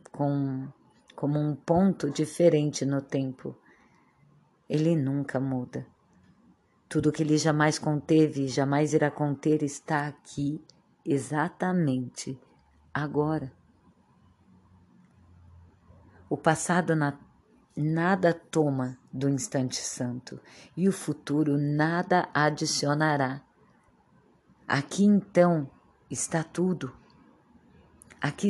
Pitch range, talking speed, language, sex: 140-175 Hz, 80 wpm, Portuguese, female